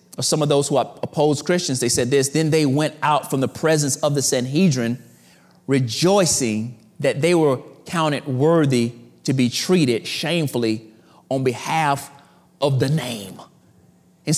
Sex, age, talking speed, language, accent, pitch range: male, 30-49, 155 wpm, English, American, 155-235 Hz